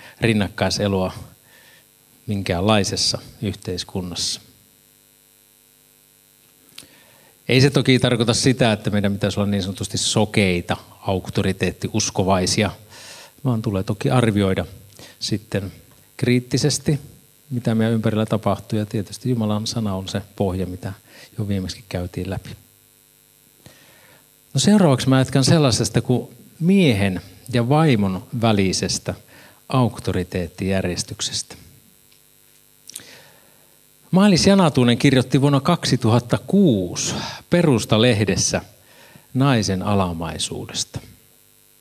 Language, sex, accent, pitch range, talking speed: Finnish, male, native, 100-130 Hz, 80 wpm